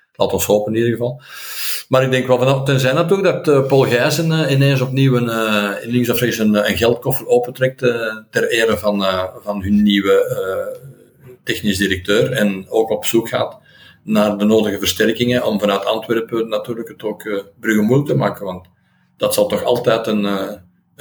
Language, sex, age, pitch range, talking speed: Dutch, male, 50-69, 105-130 Hz, 190 wpm